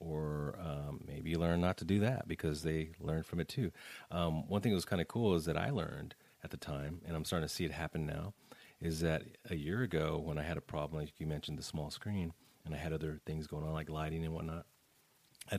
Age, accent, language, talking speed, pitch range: 30-49, American, English, 255 wpm, 80-105 Hz